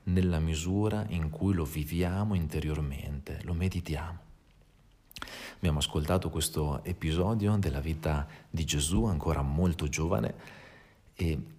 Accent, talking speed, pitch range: native, 110 wpm, 80-95 Hz